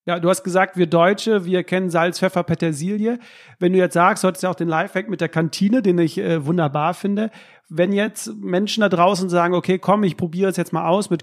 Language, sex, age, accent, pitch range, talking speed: German, male, 40-59, German, 170-200 Hz, 240 wpm